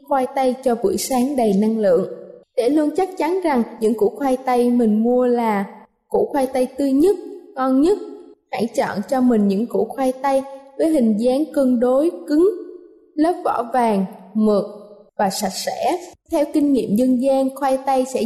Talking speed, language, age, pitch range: 185 wpm, Vietnamese, 20-39, 225-300 Hz